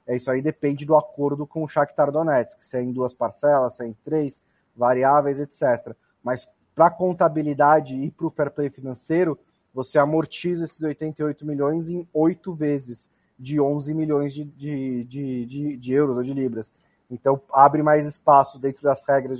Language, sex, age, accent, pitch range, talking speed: Portuguese, male, 20-39, Brazilian, 130-155 Hz, 175 wpm